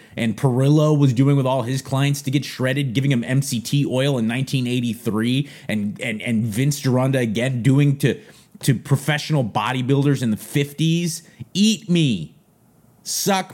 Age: 30-49